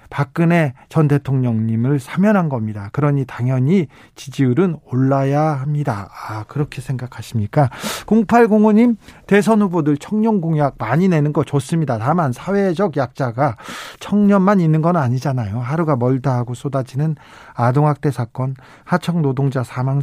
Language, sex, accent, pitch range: Korean, male, native, 130-170 Hz